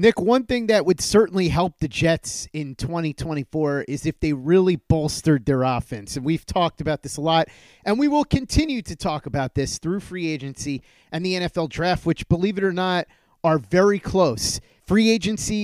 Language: English